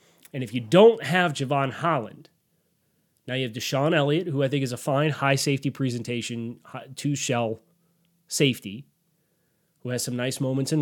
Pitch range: 125-155 Hz